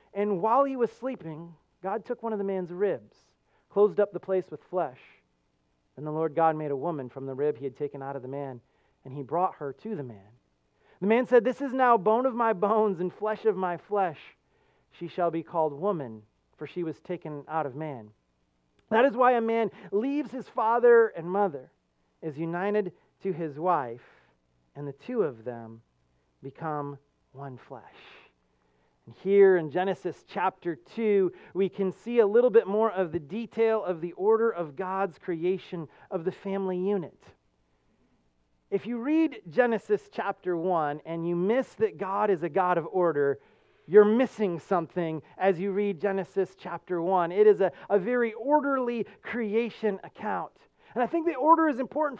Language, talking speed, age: English, 180 wpm, 30-49